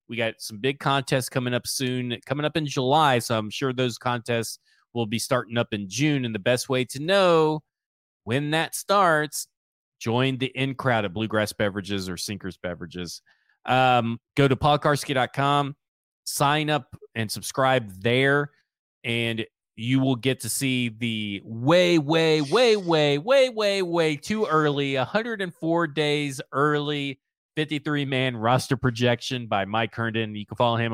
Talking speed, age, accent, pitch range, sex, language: 155 wpm, 30-49, American, 115-150 Hz, male, English